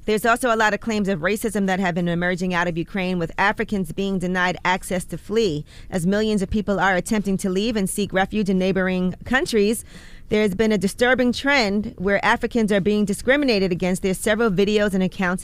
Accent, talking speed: American, 205 wpm